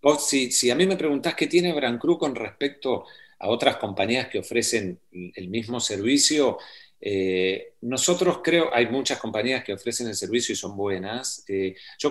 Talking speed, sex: 175 wpm, male